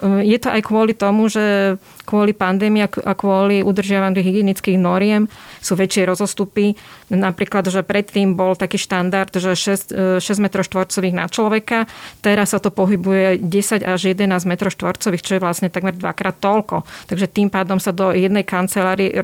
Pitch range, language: 185-210 Hz, Slovak